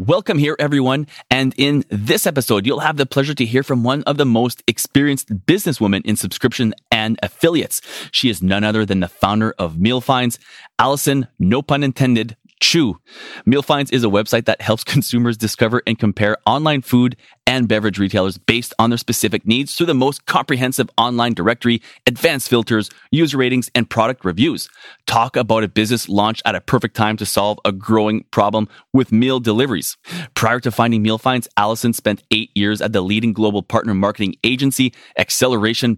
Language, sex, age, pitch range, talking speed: English, male, 30-49, 110-130 Hz, 180 wpm